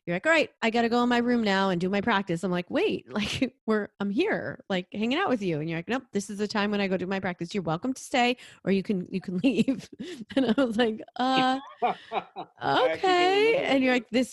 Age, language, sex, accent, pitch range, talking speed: 30-49, English, female, American, 170-230 Hz, 255 wpm